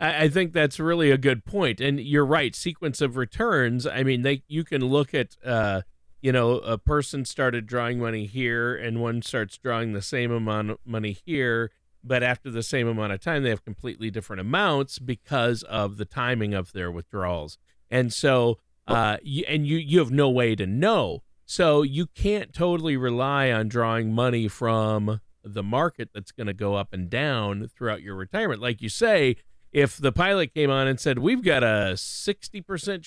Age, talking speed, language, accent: 40-59, 190 wpm, English, American